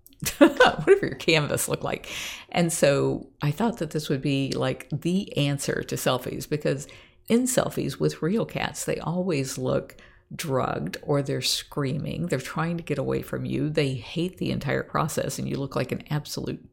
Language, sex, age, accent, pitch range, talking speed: English, female, 50-69, American, 125-165 Hz, 175 wpm